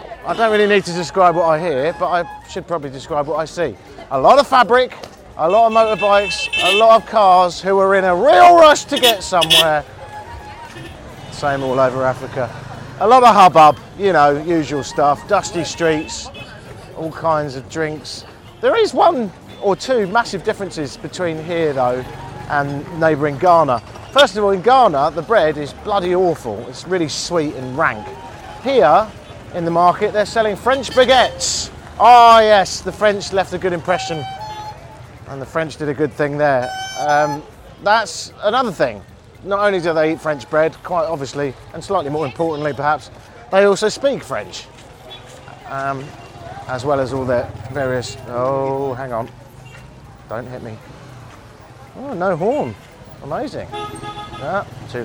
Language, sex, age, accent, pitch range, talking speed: English, male, 30-49, British, 130-190 Hz, 160 wpm